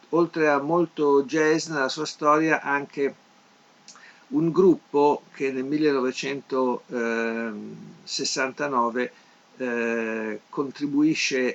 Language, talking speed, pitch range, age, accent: Italian, 75 wpm, 125-155 Hz, 50-69, native